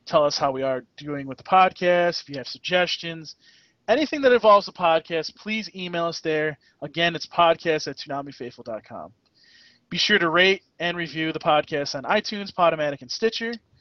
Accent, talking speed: American, 175 wpm